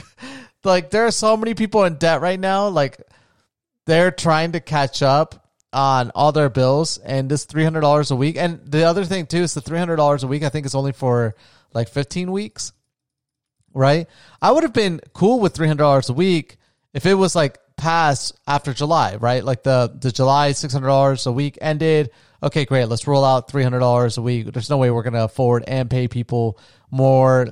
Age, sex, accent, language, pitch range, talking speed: 30-49, male, American, English, 130-165 Hz, 190 wpm